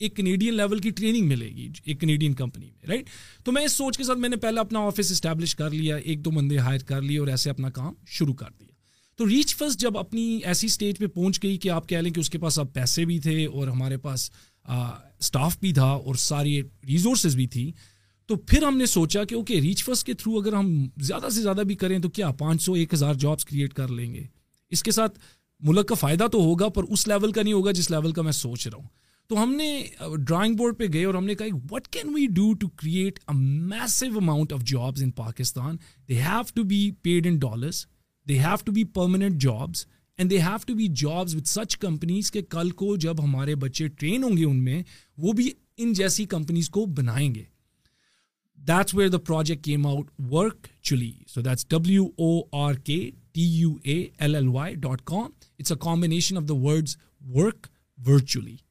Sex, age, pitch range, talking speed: male, 40-59, 140-205 Hz, 165 wpm